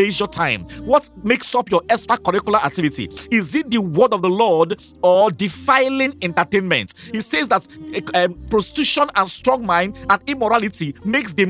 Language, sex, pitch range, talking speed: English, male, 180-250 Hz, 160 wpm